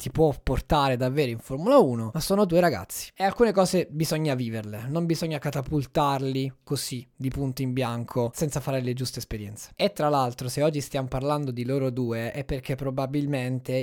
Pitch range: 130-160 Hz